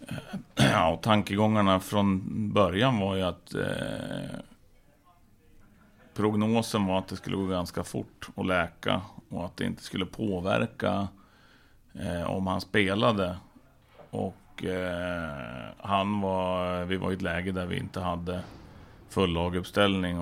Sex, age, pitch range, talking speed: male, 30-49, 90-100 Hz, 130 wpm